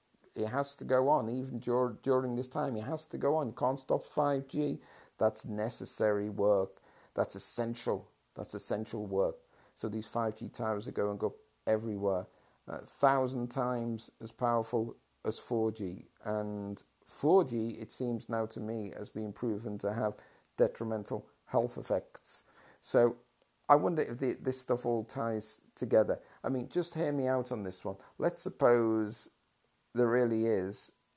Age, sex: 50-69, male